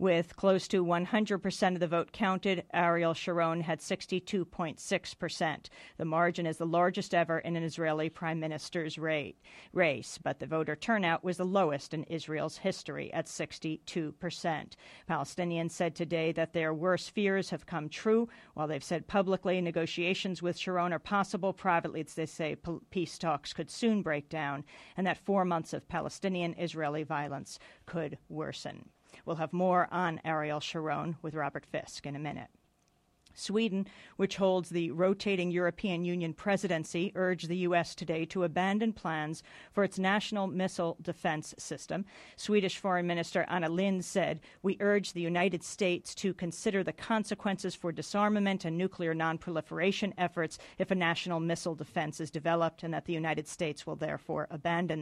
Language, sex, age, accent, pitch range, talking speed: English, female, 50-69, American, 165-190 Hz, 155 wpm